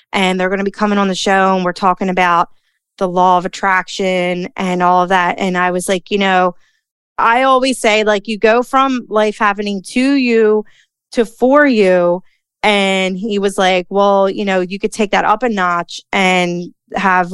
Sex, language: female, English